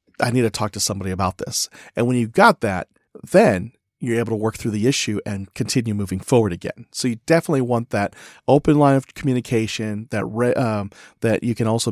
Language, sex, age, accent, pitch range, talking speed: English, male, 40-59, American, 110-135 Hz, 210 wpm